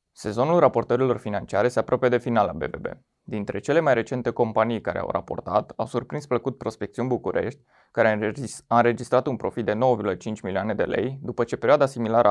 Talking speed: 175 wpm